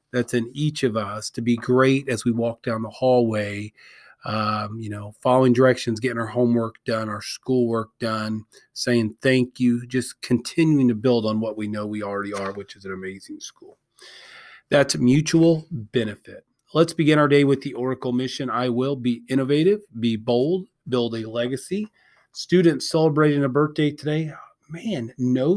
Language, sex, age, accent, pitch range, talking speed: English, male, 30-49, American, 120-150 Hz, 170 wpm